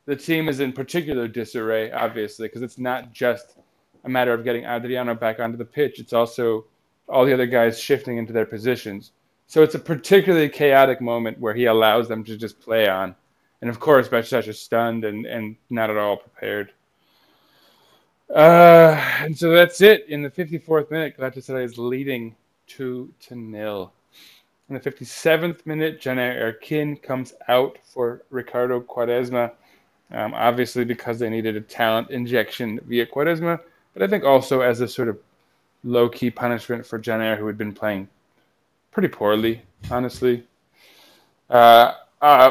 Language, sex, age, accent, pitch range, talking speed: English, male, 20-39, American, 115-140 Hz, 160 wpm